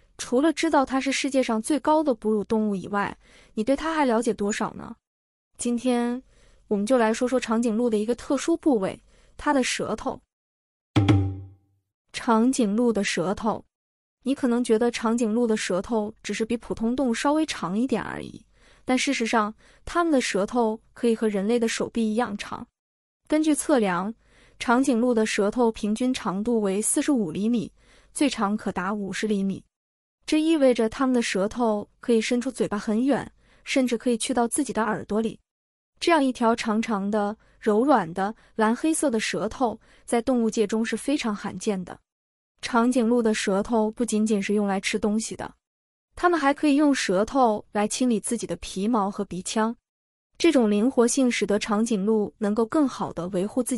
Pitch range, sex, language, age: 205-250 Hz, female, Chinese, 20-39